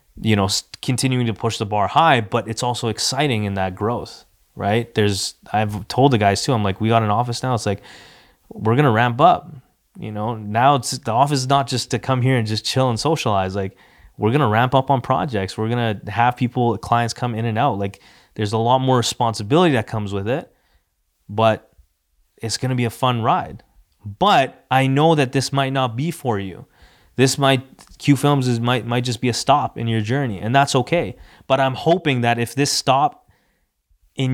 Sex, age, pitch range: male, 20-39, 105-130 Hz